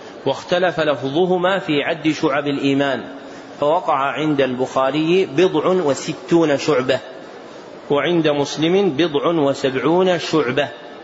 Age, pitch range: 40-59, 140-165 Hz